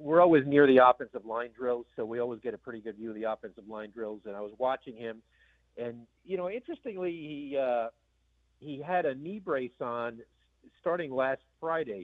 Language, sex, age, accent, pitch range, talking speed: English, male, 50-69, American, 115-145 Hz, 200 wpm